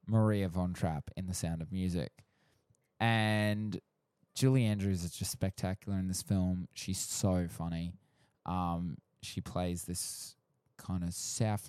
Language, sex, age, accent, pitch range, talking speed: English, male, 20-39, Australian, 90-115 Hz, 140 wpm